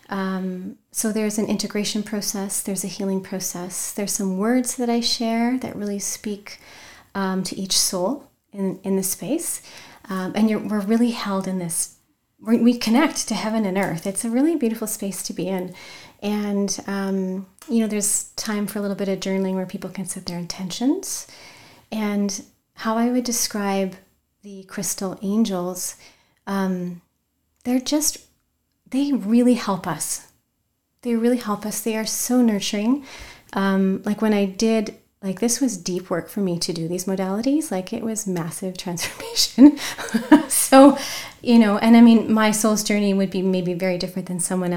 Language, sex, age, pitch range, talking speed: English, female, 30-49, 190-230 Hz, 170 wpm